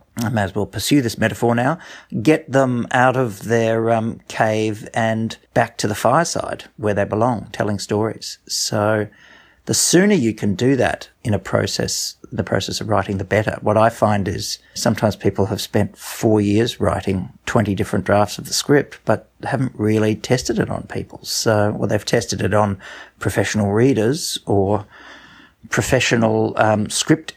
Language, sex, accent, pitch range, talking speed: English, male, Australian, 105-125 Hz, 170 wpm